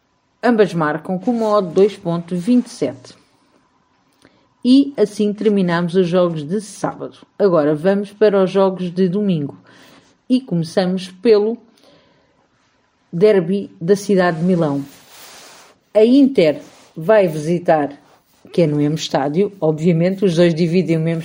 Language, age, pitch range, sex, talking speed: Portuguese, 50-69, 175-230 Hz, female, 120 wpm